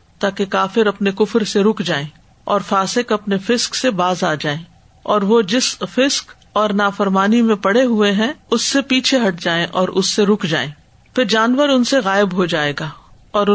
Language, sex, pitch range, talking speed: Urdu, female, 185-225 Hz, 195 wpm